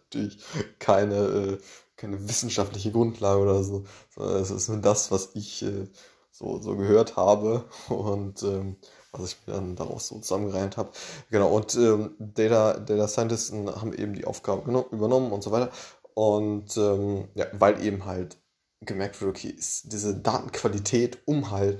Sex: male